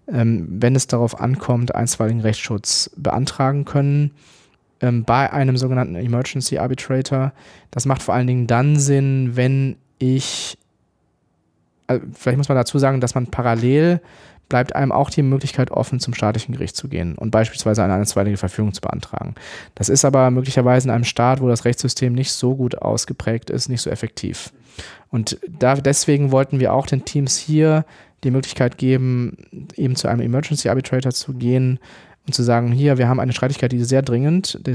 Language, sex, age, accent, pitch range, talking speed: German, male, 30-49, German, 120-140 Hz, 170 wpm